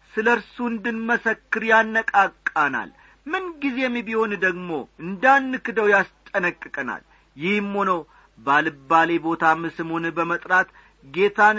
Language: Amharic